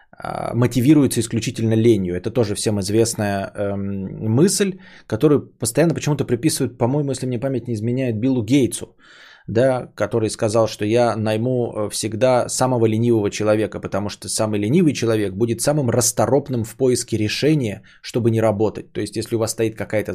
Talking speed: 150 wpm